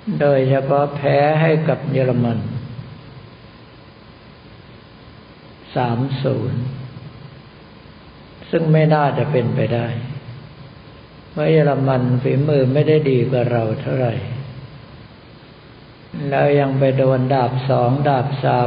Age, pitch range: 60-79, 125-140 Hz